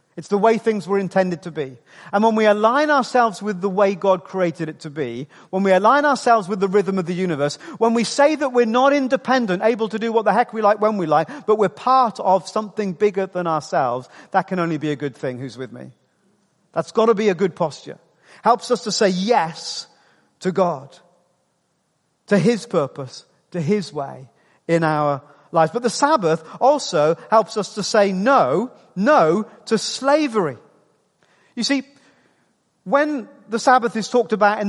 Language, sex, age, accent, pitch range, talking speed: English, male, 40-59, British, 180-245 Hz, 190 wpm